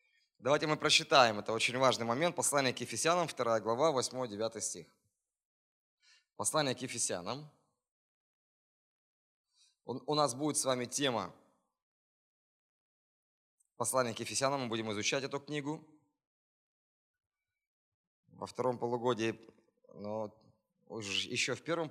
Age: 20-39